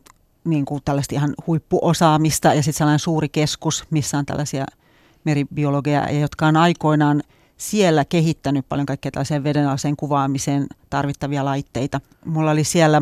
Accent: native